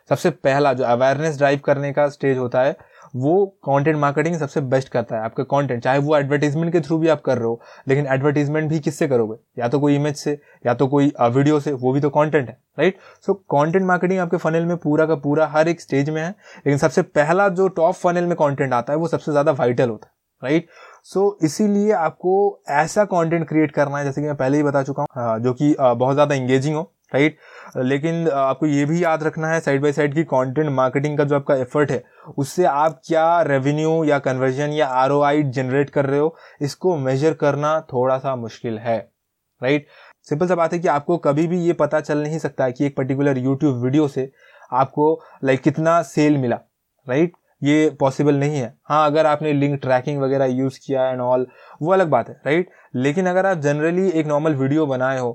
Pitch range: 135-160 Hz